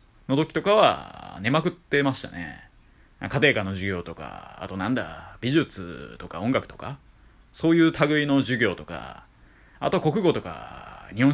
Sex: male